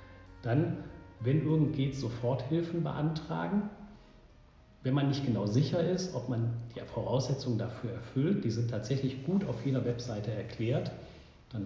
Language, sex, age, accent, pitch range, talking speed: German, male, 40-59, German, 115-145 Hz, 140 wpm